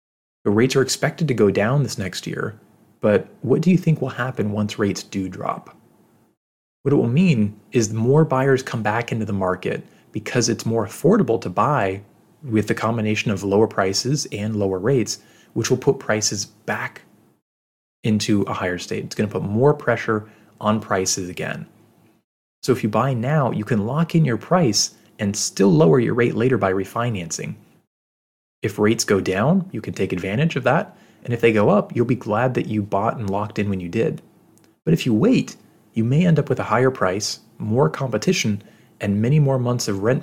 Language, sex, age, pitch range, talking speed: English, male, 30-49, 100-130 Hz, 195 wpm